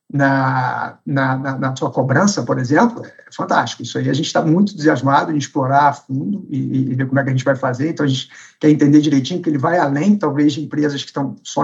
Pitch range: 130-160 Hz